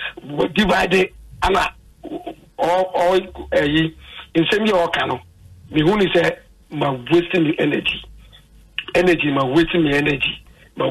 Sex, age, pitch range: male, 60-79, 150-185 Hz